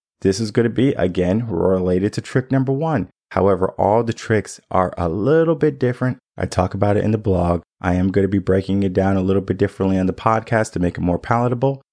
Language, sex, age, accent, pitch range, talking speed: English, male, 20-39, American, 90-110 Hz, 235 wpm